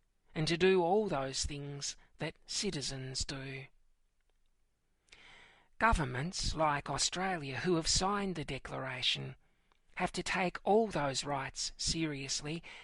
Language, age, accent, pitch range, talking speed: English, 40-59, Australian, 135-180 Hz, 110 wpm